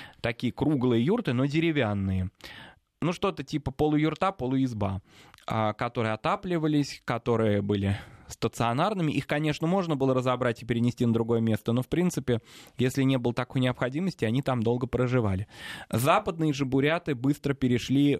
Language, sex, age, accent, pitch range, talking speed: Russian, male, 20-39, native, 110-145 Hz, 140 wpm